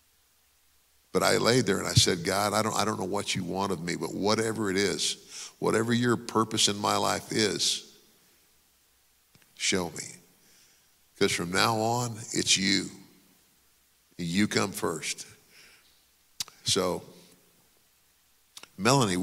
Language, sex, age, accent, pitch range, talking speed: English, male, 50-69, American, 85-105 Hz, 130 wpm